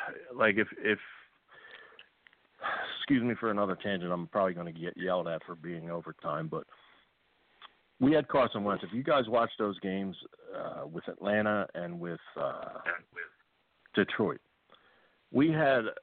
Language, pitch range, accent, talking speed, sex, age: English, 90-120 Hz, American, 145 wpm, male, 50-69